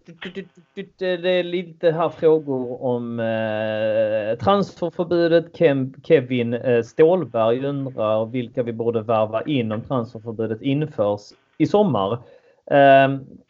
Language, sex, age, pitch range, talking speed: Swedish, male, 30-49, 120-170 Hz, 95 wpm